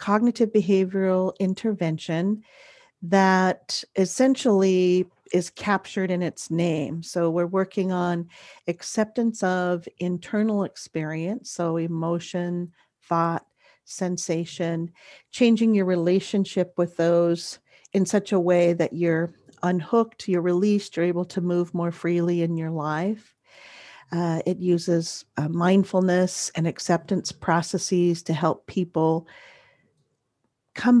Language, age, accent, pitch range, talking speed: English, 50-69, American, 170-195 Hz, 110 wpm